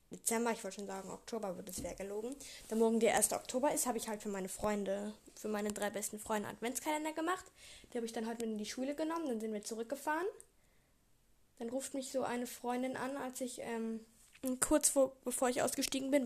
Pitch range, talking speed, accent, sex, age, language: 215-265 Hz, 220 wpm, German, female, 10-29, German